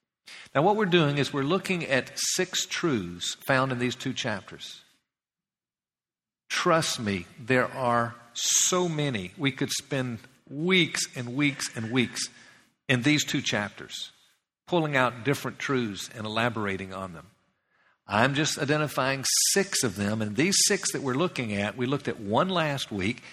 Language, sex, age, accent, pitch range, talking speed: English, male, 50-69, American, 110-145 Hz, 155 wpm